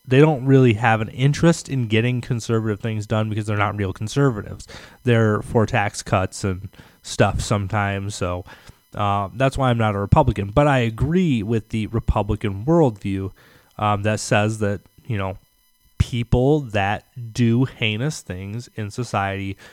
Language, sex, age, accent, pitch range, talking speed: English, male, 30-49, American, 100-125 Hz, 155 wpm